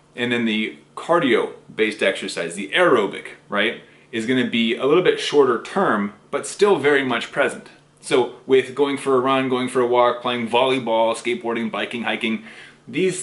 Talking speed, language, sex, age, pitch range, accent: 170 wpm, English, male, 30-49, 115-155 Hz, American